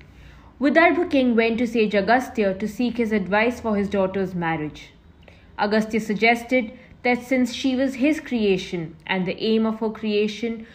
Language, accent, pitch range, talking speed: English, Indian, 185-235 Hz, 155 wpm